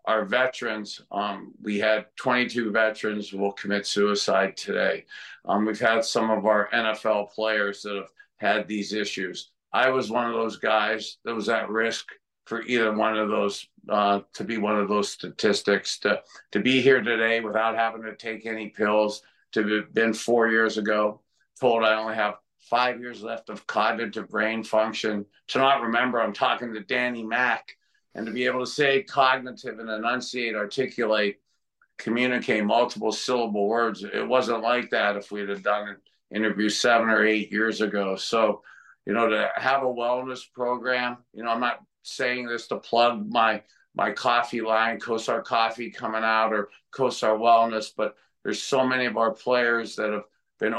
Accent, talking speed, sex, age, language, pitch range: American, 175 wpm, male, 50-69, English, 105-120 Hz